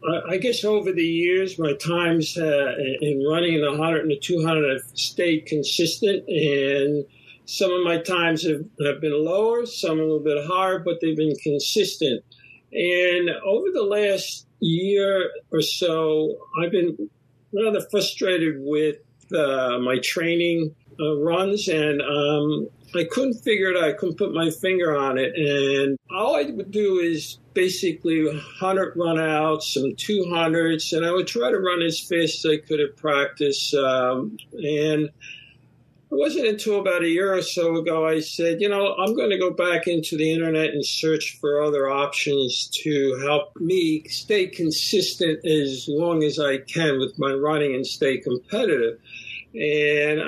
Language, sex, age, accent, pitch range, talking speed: English, male, 50-69, American, 145-180 Hz, 165 wpm